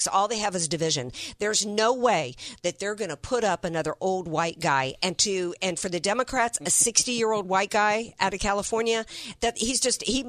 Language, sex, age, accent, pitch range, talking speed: English, female, 50-69, American, 160-210 Hz, 215 wpm